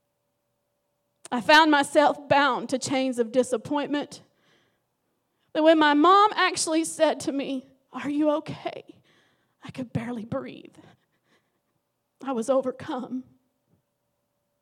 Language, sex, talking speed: English, female, 105 wpm